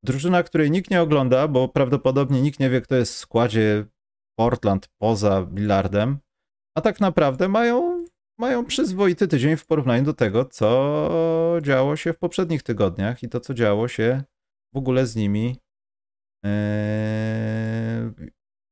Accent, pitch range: native, 100-130 Hz